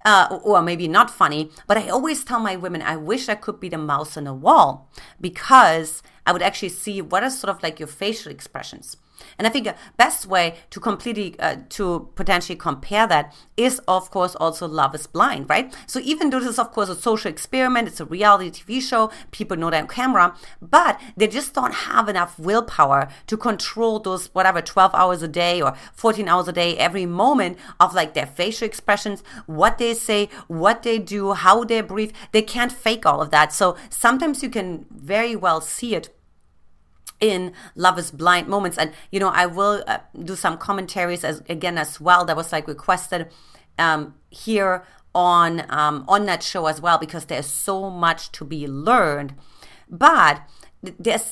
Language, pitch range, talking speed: English, 165-220 Hz, 190 wpm